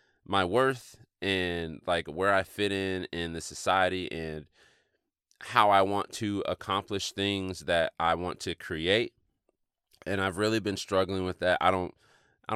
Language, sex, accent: English, male, American